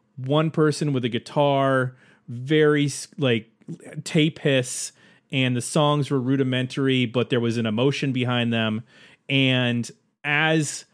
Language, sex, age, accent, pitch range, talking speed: English, male, 30-49, American, 115-140 Hz, 125 wpm